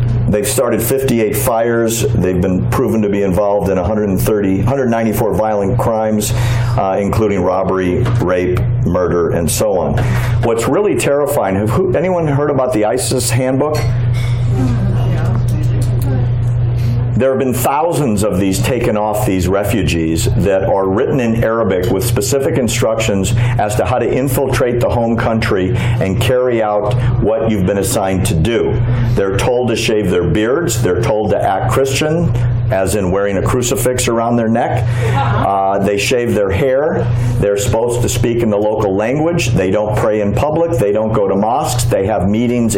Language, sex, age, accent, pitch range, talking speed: English, male, 50-69, American, 105-125 Hz, 160 wpm